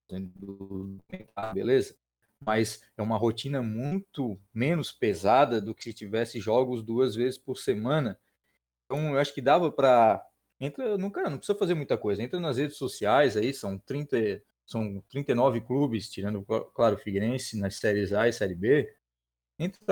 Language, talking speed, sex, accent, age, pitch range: Portuguese, 155 wpm, male, Brazilian, 20-39, 110-170 Hz